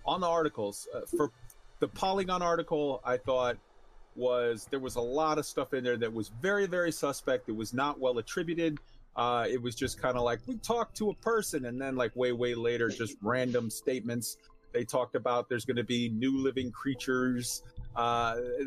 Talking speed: 195 wpm